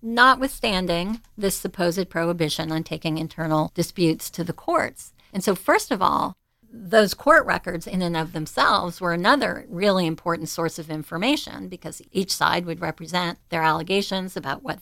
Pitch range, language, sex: 165-200 Hz, English, female